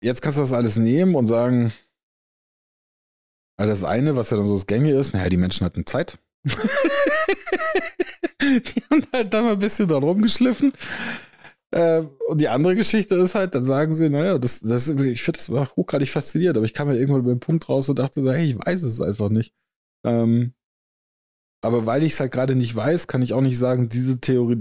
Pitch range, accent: 100-140 Hz, German